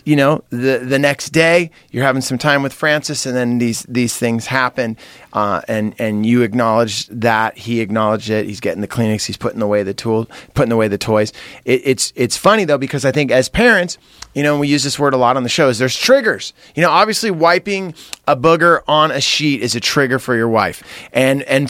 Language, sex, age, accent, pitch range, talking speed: English, male, 30-49, American, 115-145 Hz, 225 wpm